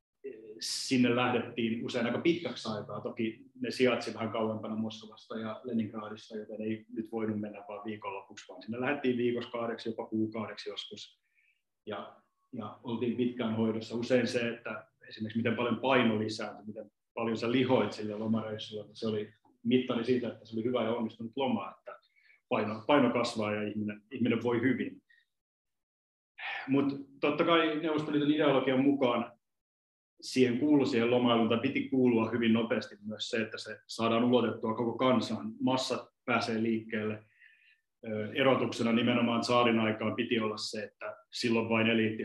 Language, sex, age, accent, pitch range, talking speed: Finnish, male, 30-49, native, 110-125 Hz, 145 wpm